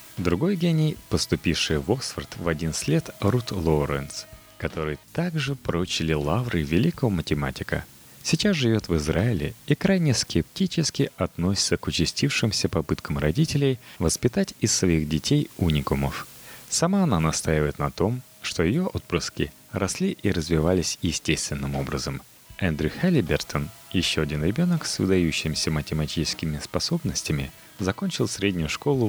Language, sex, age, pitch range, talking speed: Russian, male, 30-49, 80-125 Hz, 120 wpm